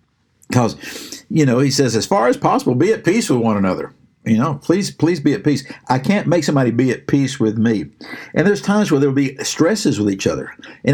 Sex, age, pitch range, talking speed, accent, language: male, 60-79, 120-155 Hz, 235 wpm, American, English